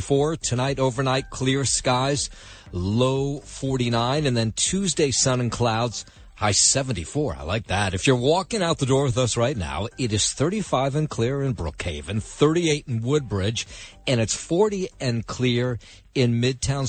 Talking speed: 155 wpm